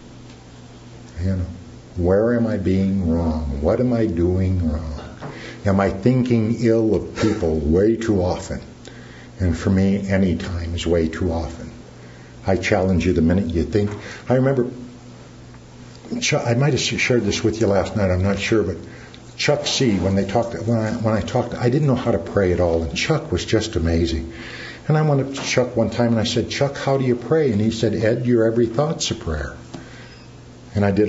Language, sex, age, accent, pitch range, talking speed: English, male, 60-79, American, 90-130 Hz, 200 wpm